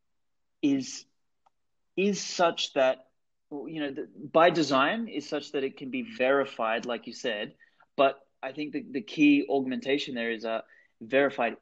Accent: Australian